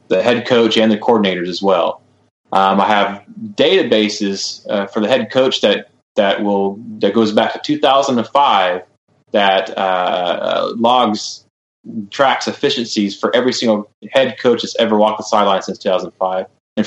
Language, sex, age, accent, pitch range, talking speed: English, male, 20-39, American, 95-115 Hz, 155 wpm